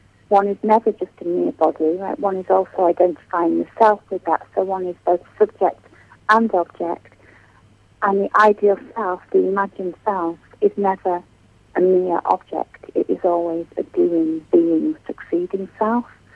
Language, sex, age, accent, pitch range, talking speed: English, female, 40-59, British, 180-225 Hz, 160 wpm